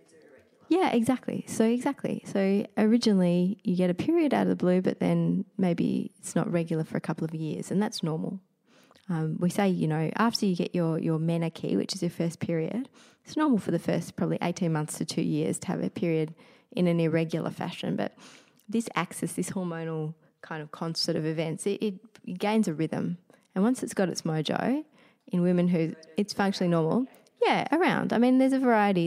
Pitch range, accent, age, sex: 160-215 Hz, Australian, 20-39, female